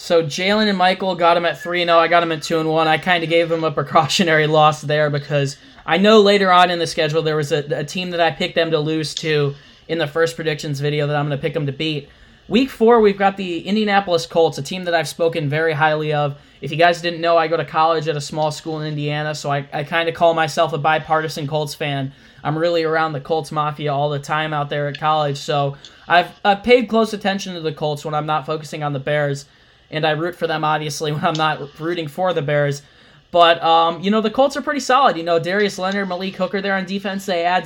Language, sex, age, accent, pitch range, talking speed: English, male, 10-29, American, 155-180 Hz, 250 wpm